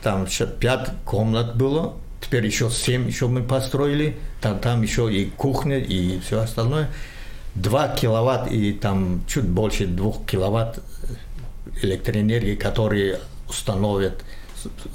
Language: Russian